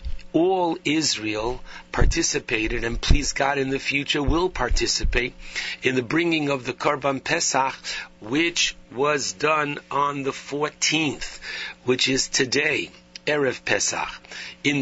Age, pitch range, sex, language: 60-79, 115-140 Hz, male, English